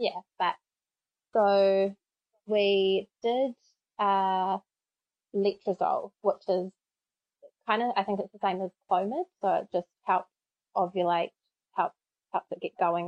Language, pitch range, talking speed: English, 180-200 Hz, 130 wpm